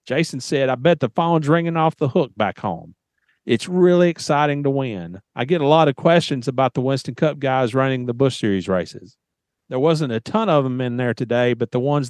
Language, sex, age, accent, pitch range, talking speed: English, male, 40-59, American, 130-165 Hz, 225 wpm